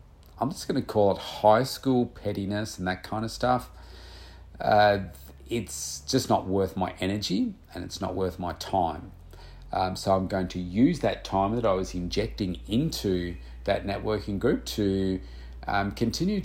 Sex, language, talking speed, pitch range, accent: male, English, 170 wpm, 85-105 Hz, Australian